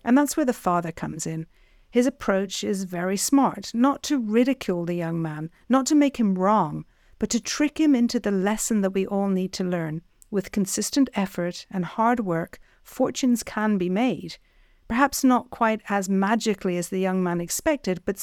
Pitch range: 185-235 Hz